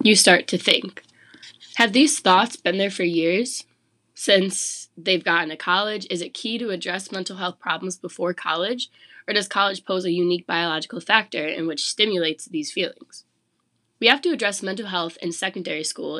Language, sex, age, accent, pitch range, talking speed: English, female, 20-39, American, 170-210 Hz, 180 wpm